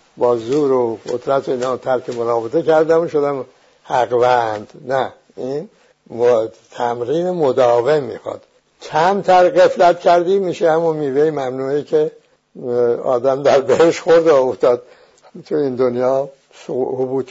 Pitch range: 125-180 Hz